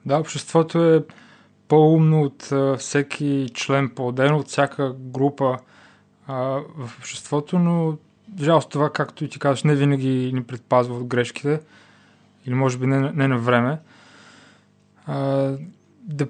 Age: 20-39